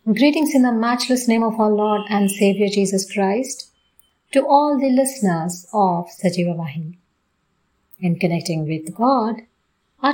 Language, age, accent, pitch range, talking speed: English, 50-69, Indian, 180-240 Hz, 140 wpm